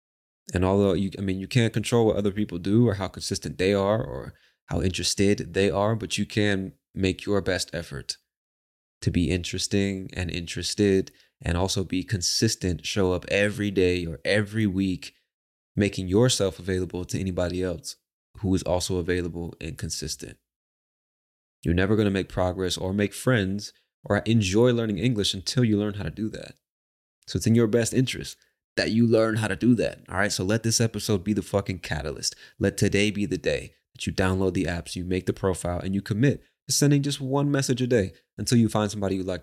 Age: 20-39